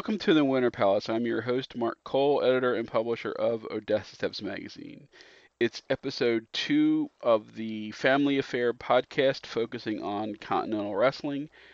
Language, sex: English, male